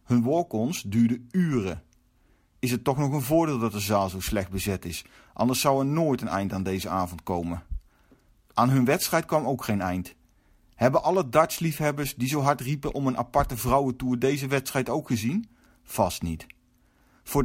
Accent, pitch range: Dutch, 110-145 Hz